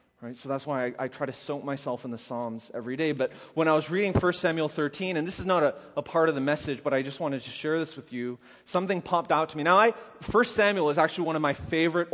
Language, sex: English, male